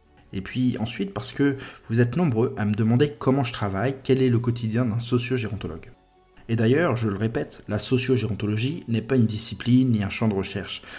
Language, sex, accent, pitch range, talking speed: French, male, French, 100-125 Hz, 195 wpm